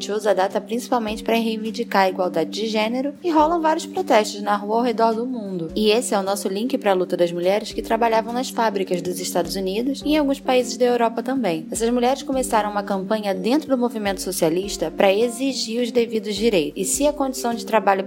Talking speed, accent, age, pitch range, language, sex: 215 wpm, Brazilian, 10-29, 185-235 Hz, Portuguese, female